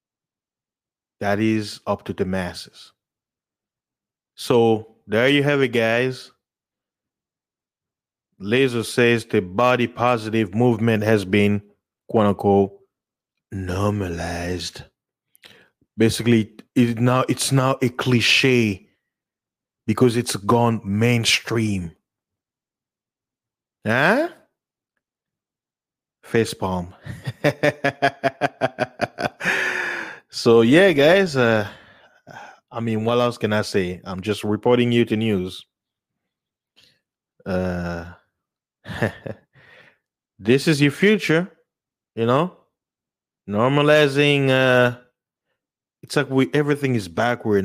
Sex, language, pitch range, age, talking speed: male, English, 105-140 Hz, 30-49, 85 wpm